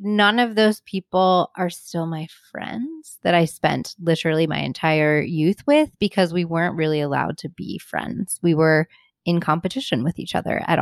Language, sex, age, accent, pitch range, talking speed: English, female, 20-39, American, 155-215 Hz, 180 wpm